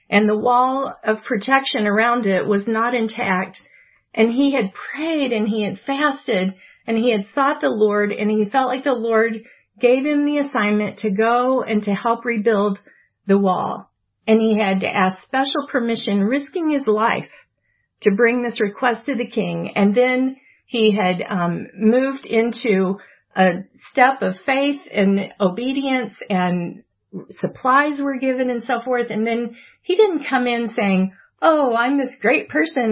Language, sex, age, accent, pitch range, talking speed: English, female, 50-69, American, 210-270 Hz, 165 wpm